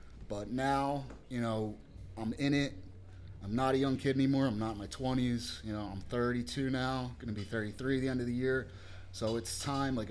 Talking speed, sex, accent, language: 215 wpm, male, American, English